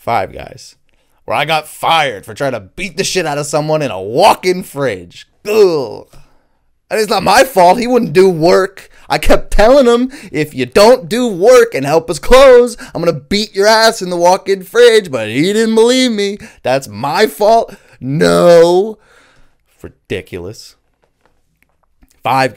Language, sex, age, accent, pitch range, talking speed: English, male, 20-39, American, 140-200 Hz, 165 wpm